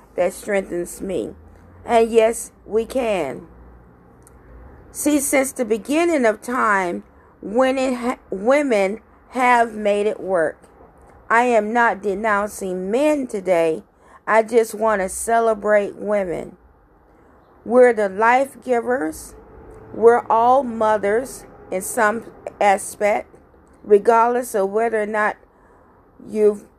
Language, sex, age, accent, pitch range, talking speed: English, female, 40-59, American, 205-245 Hz, 105 wpm